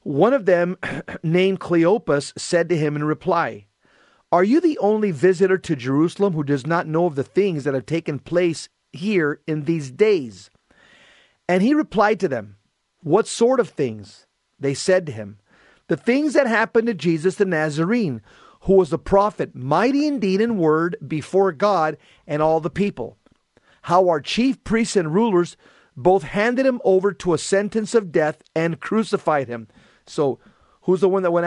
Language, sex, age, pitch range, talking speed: English, male, 40-59, 150-195 Hz, 175 wpm